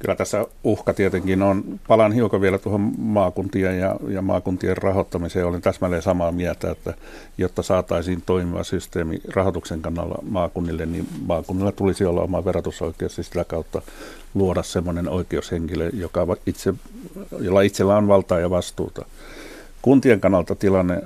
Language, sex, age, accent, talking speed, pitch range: Finnish, male, 60-79, native, 140 wpm, 85-100 Hz